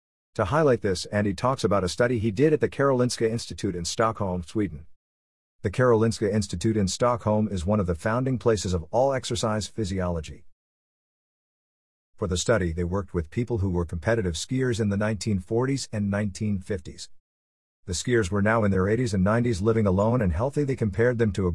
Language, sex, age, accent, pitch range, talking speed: English, male, 50-69, American, 90-120 Hz, 185 wpm